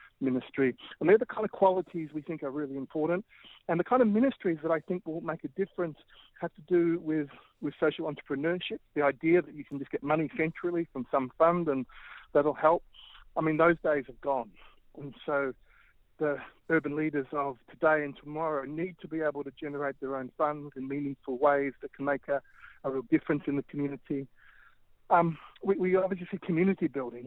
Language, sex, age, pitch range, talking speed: English, male, 40-59, 140-170 Hz, 200 wpm